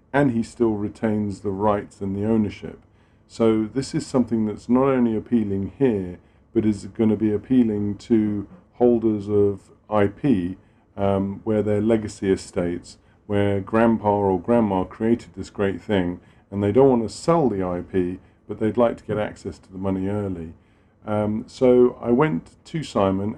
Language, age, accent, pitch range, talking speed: English, 40-59, British, 100-115 Hz, 165 wpm